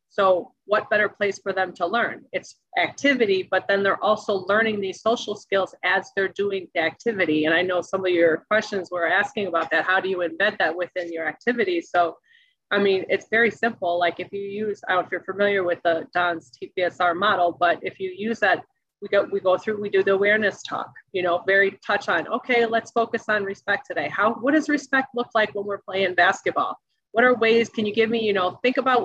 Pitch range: 185-215 Hz